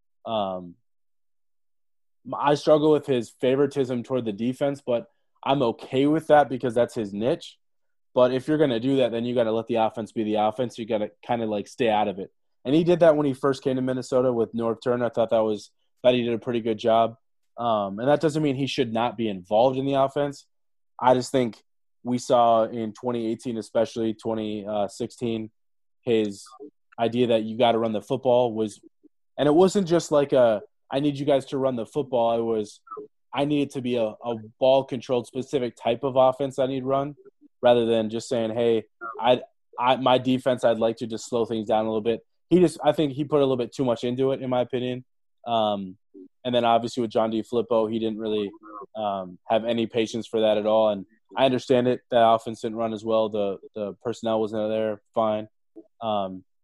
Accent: American